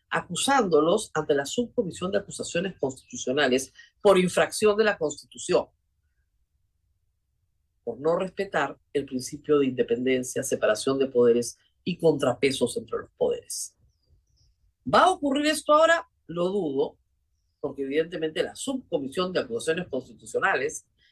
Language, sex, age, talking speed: Spanish, female, 40-59, 115 wpm